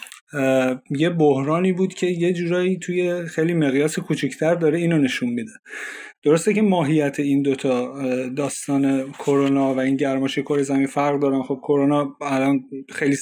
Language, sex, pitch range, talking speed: Persian, male, 140-165 Hz, 150 wpm